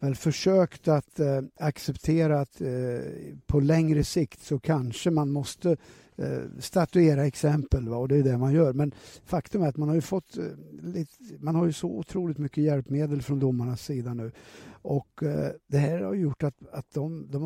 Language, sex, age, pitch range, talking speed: Swedish, male, 60-79, 140-165 Hz, 190 wpm